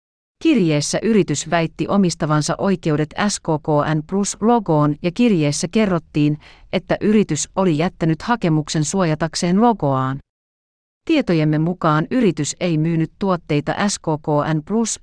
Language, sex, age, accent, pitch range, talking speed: Finnish, female, 40-59, native, 150-185 Hz, 105 wpm